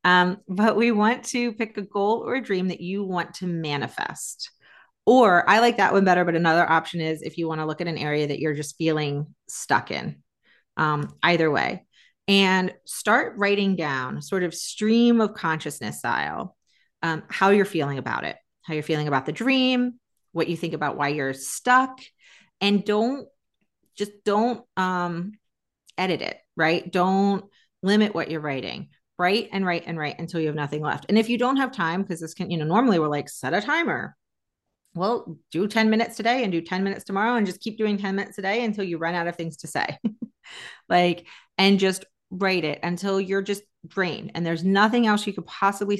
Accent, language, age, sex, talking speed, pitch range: American, English, 30-49, female, 200 wpm, 165-210 Hz